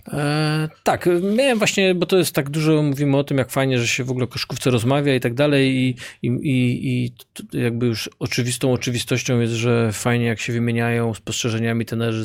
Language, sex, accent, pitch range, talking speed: Polish, male, native, 115-140 Hz, 190 wpm